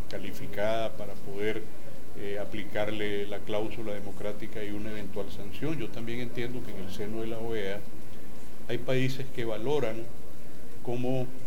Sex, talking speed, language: male, 140 wpm, Spanish